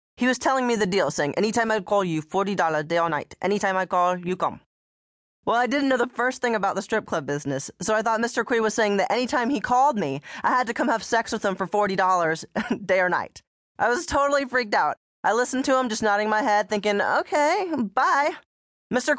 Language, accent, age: English, American, 20-39